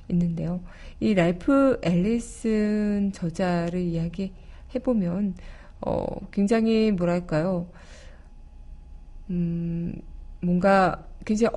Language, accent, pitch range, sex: Korean, native, 175-220 Hz, female